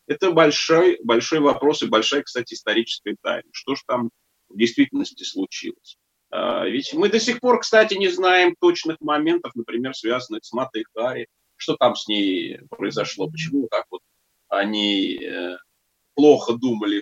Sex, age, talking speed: male, 30-49, 145 wpm